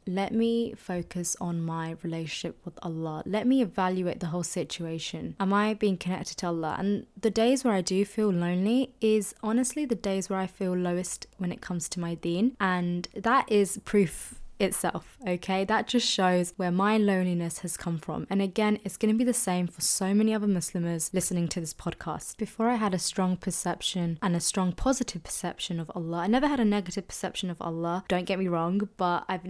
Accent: British